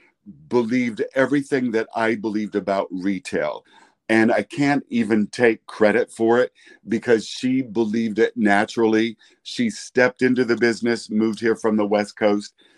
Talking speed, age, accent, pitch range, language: 145 wpm, 50-69, American, 110-130 Hz, English